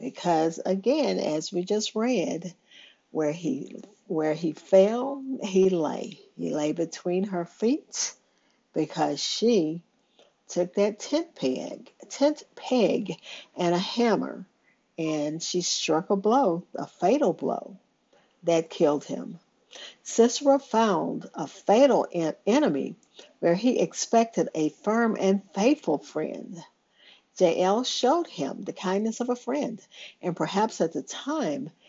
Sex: female